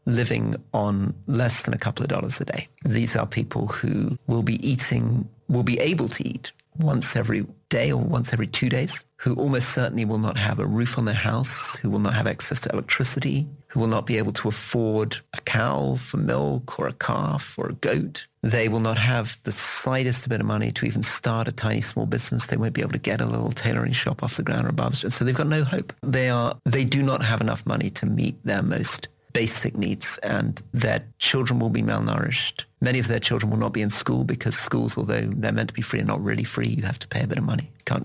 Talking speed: 240 wpm